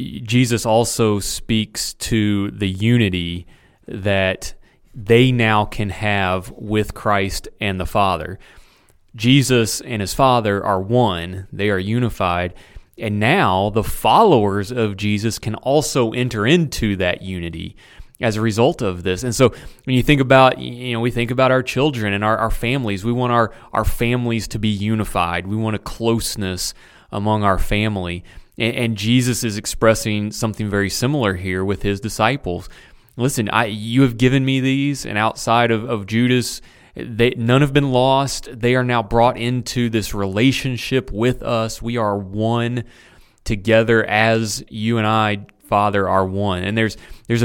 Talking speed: 160 wpm